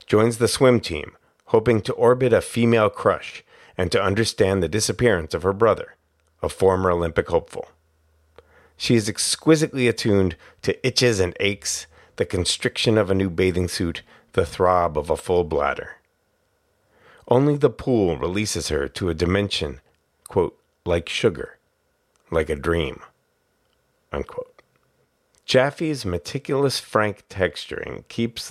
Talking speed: 135 wpm